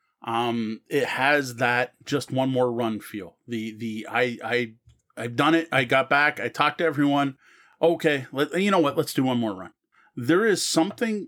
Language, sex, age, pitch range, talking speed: English, male, 30-49, 125-160 Hz, 190 wpm